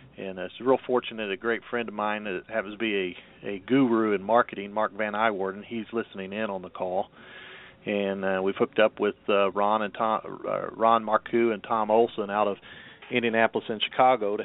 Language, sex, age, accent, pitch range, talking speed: English, male, 40-59, American, 105-120 Hz, 210 wpm